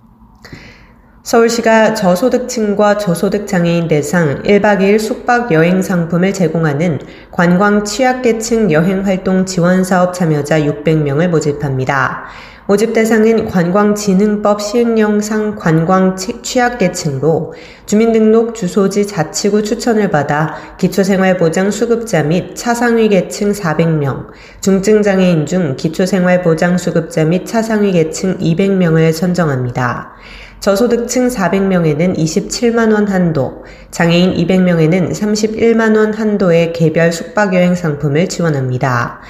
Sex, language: female, Korean